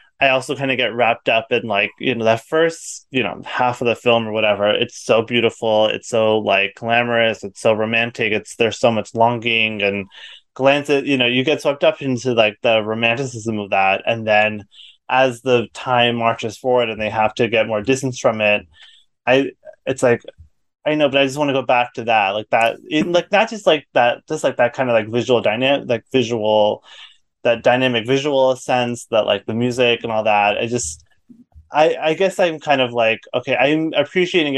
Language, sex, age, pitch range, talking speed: English, male, 20-39, 110-135 Hz, 210 wpm